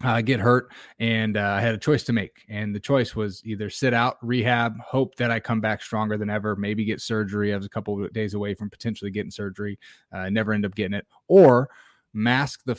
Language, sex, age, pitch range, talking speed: English, male, 20-39, 110-130 Hz, 235 wpm